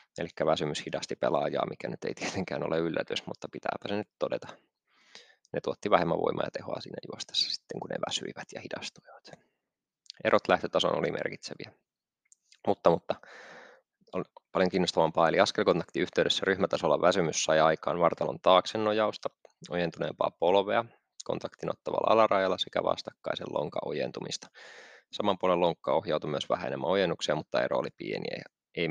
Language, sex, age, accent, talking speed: Finnish, male, 20-39, native, 145 wpm